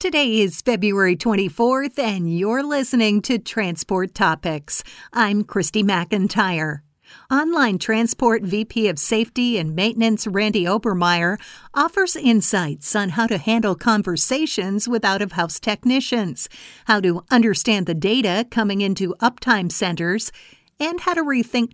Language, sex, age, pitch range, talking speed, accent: English, female, 50-69, 190-240 Hz, 125 wpm, American